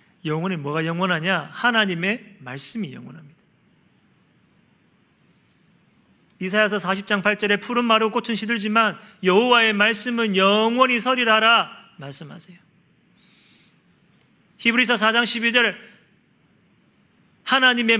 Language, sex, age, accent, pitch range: Korean, male, 40-59, native, 190-235 Hz